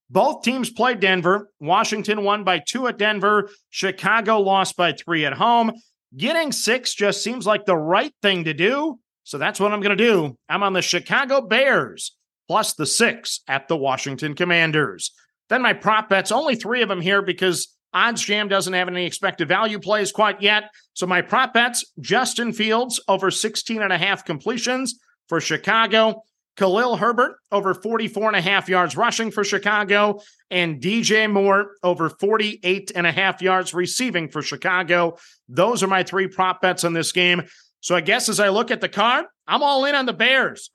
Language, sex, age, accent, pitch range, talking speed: English, male, 50-69, American, 180-230 Hz, 185 wpm